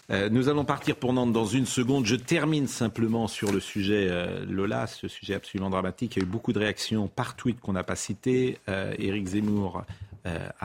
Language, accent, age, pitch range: French, French, 40-59, 95-115 Hz